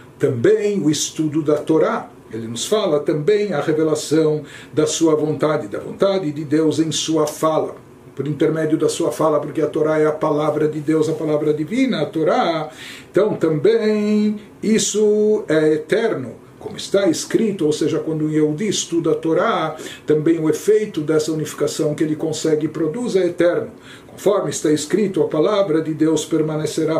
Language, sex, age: Portuguese, male, 60-79